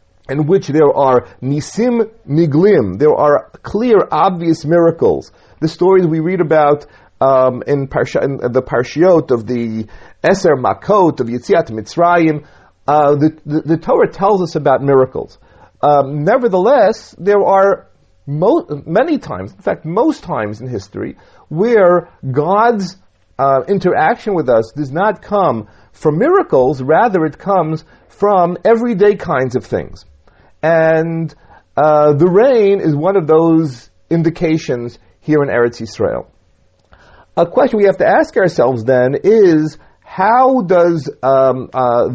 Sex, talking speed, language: male, 135 wpm, English